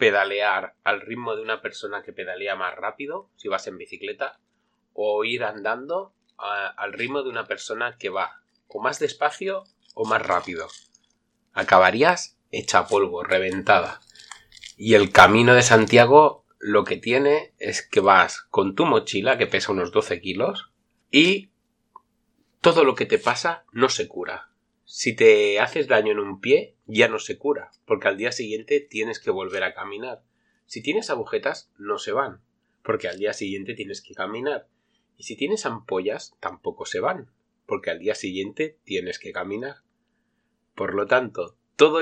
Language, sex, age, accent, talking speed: Italian, male, 30-49, Spanish, 160 wpm